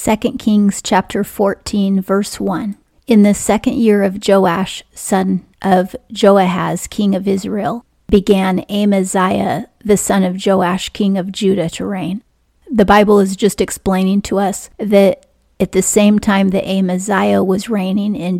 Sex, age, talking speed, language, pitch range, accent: female, 30-49, 150 wpm, English, 185-205 Hz, American